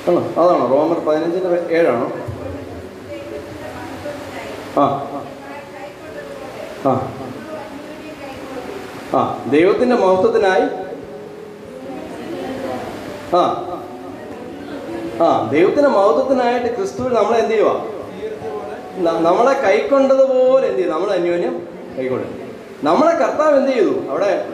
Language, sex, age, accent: Malayalam, male, 30-49, native